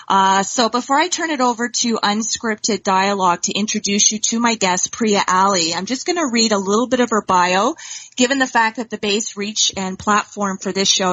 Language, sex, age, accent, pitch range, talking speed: English, female, 30-49, American, 190-240 Hz, 215 wpm